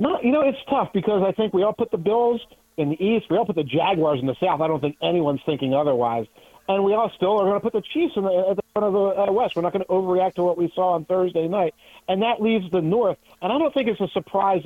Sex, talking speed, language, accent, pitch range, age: male, 285 wpm, English, American, 150-195 Hz, 40-59